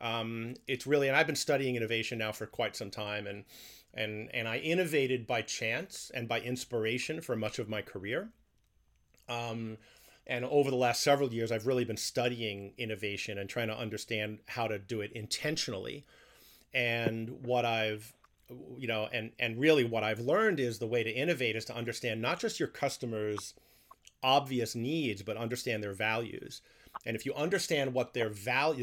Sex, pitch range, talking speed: male, 110-125 Hz, 175 wpm